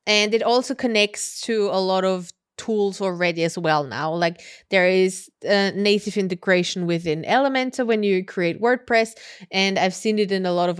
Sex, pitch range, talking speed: female, 175-210 Hz, 185 wpm